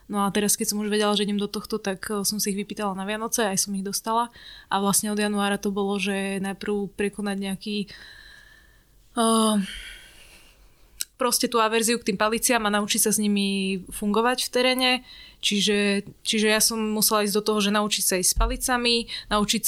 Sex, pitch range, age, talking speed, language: female, 200-215 Hz, 20-39, 190 wpm, Slovak